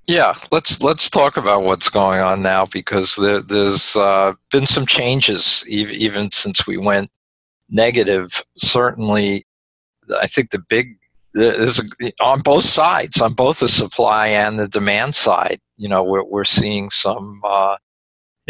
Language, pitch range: English, 95-105 Hz